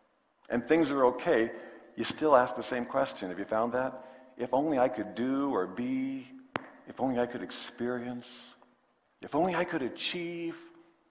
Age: 50-69